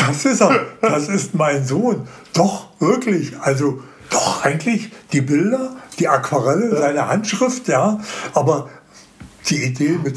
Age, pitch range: 60-79, 140-195 Hz